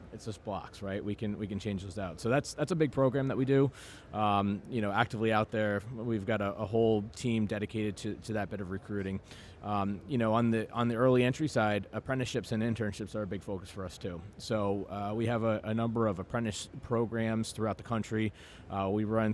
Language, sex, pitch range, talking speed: English, male, 100-115 Hz, 235 wpm